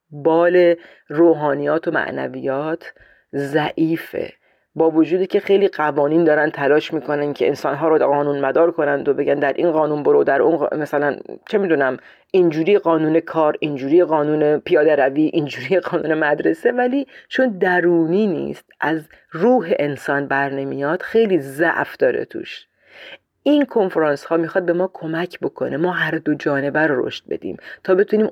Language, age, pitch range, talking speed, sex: Persian, 40-59, 150-195 Hz, 155 wpm, female